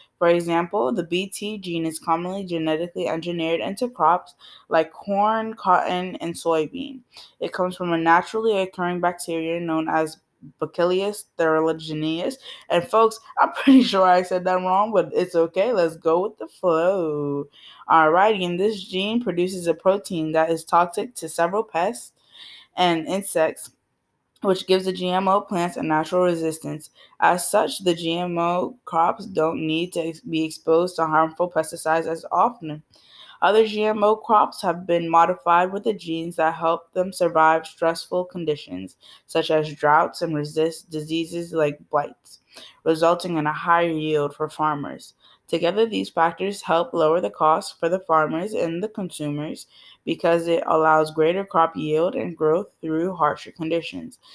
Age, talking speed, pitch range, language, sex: 20-39, 150 wpm, 160-190 Hz, English, female